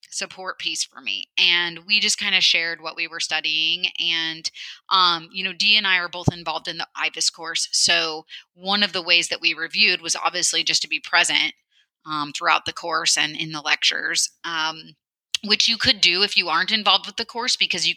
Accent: American